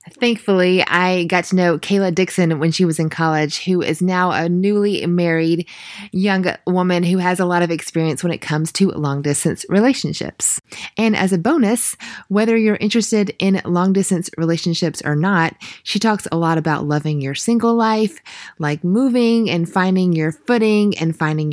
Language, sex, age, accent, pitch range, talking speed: English, female, 20-39, American, 165-200 Hz, 170 wpm